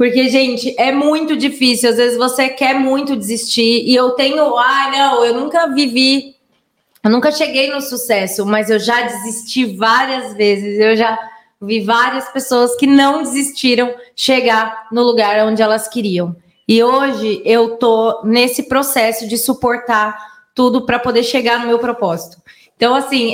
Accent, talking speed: Brazilian, 160 wpm